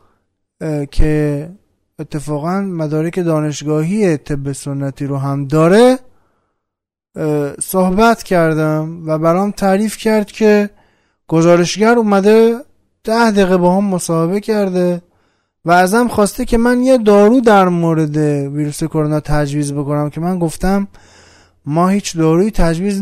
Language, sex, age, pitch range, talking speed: Persian, male, 20-39, 140-205 Hz, 115 wpm